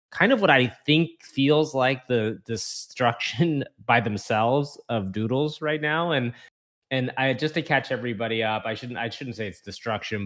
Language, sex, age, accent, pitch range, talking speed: English, male, 20-39, American, 110-130 Hz, 175 wpm